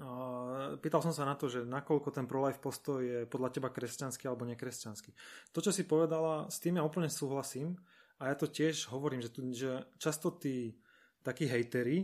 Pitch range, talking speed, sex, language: 125-150 Hz, 175 wpm, male, Slovak